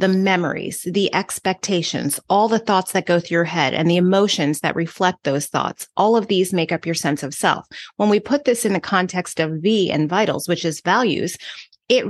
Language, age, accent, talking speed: English, 30-49, American, 215 wpm